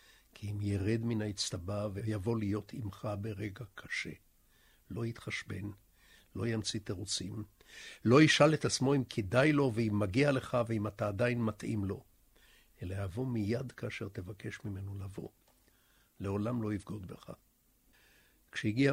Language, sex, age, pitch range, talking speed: Hebrew, male, 60-79, 100-115 Hz, 135 wpm